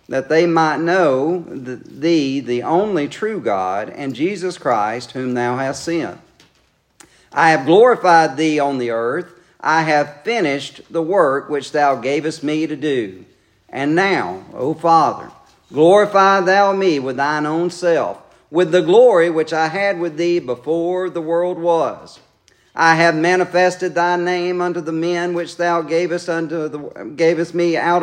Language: English